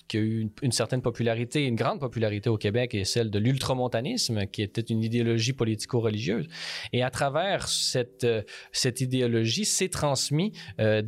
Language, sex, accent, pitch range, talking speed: French, male, Canadian, 110-140 Hz, 160 wpm